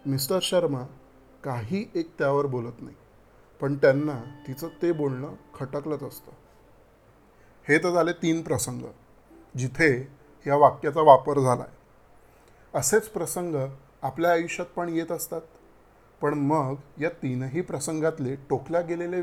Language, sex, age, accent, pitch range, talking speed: Marathi, male, 30-49, native, 130-165 Hz, 120 wpm